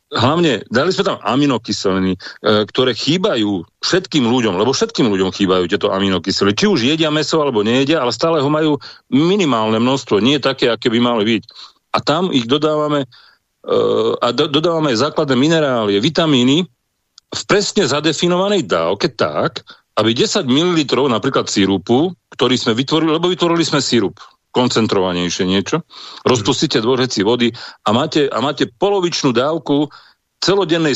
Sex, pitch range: male, 115-160 Hz